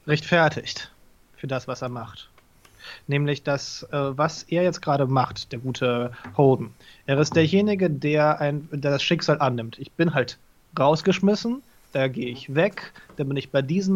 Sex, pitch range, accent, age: male, 135-175 Hz, German, 30-49